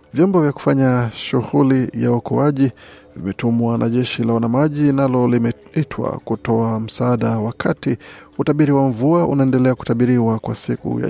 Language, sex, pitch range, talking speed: Swahili, male, 115-135 Hz, 130 wpm